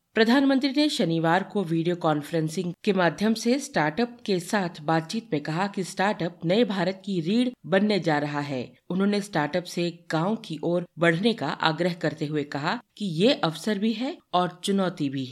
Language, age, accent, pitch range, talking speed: Hindi, 50-69, native, 160-220 Hz, 175 wpm